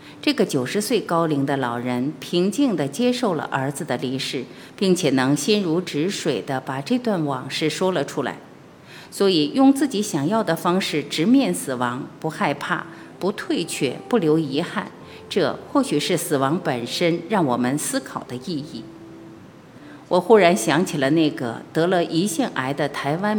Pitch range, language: 140-195 Hz, Chinese